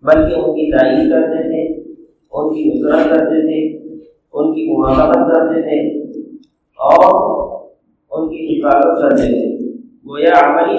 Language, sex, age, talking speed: English, male, 50-69, 100 wpm